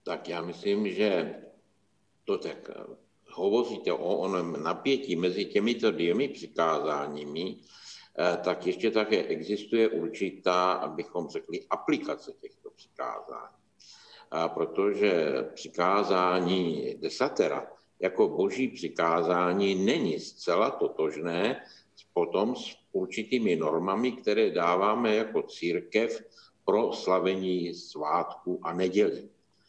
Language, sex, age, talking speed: Slovak, male, 60-79, 95 wpm